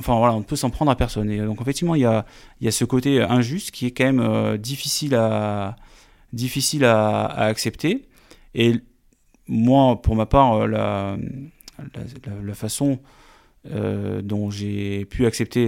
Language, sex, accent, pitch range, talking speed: French, male, French, 105-125 Hz, 155 wpm